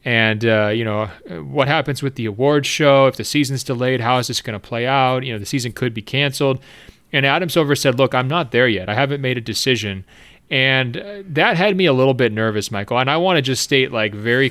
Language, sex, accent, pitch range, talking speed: English, male, American, 115-135 Hz, 245 wpm